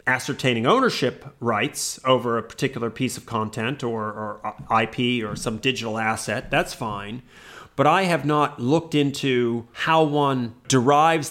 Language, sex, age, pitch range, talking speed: English, male, 30-49, 120-155 Hz, 145 wpm